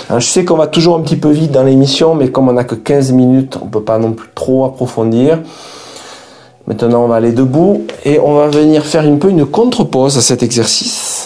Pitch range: 130-170 Hz